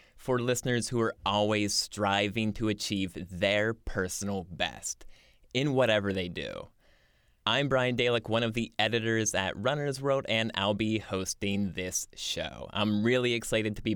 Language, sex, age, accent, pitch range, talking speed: English, male, 20-39, American, 100-120 Hz, 155 wpm